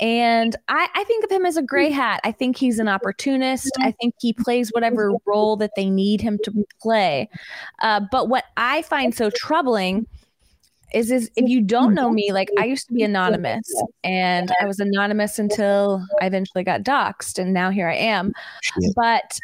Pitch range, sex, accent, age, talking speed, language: 200-245 Hz, female, American, 20-39, 190 wpm, English